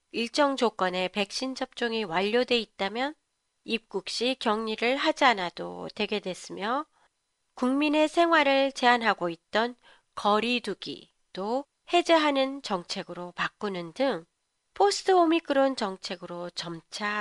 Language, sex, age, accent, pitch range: Japanese, female, 30-49, Korean, 195-285 Hz